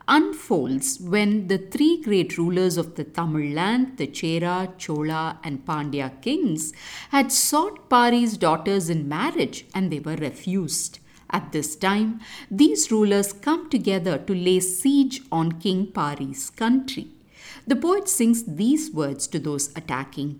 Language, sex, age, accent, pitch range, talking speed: English, female, 50-69, Indian, 160-240 Hz, 140 wpm